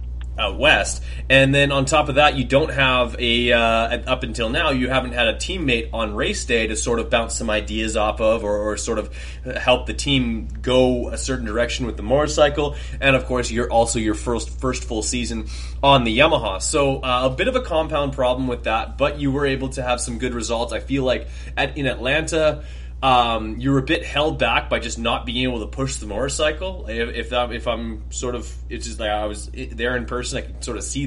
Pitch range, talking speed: 105-135 Hz, 225 wpm